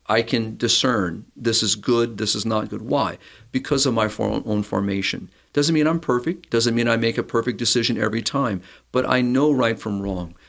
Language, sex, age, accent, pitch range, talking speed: English, male, 50-69, American, 105-130 Hz, 200 wpm